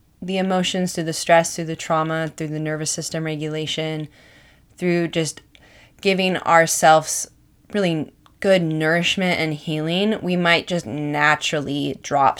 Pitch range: 150-175 Hz